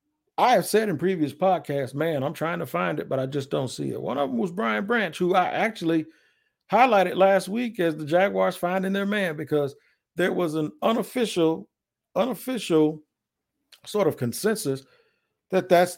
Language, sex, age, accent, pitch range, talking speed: English, male, 50-69, American, 140-185 Hz, 175 wpm